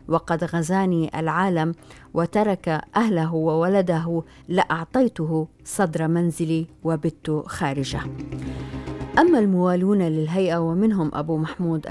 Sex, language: female, Arabic